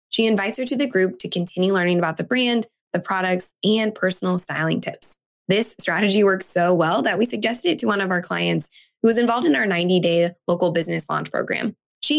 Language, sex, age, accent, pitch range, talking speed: English, female, 20-39, American, 170-205 Hz, 210 wpm